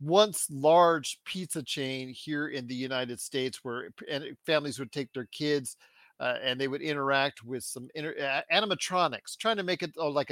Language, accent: English, American